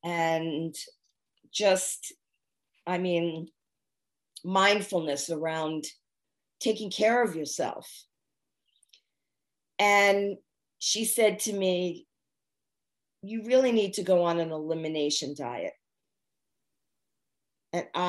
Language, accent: English, American